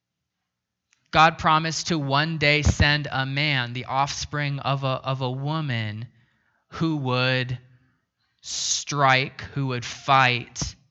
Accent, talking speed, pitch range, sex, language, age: American, 115 wpm, 120-140 Hz, male, English, 20-39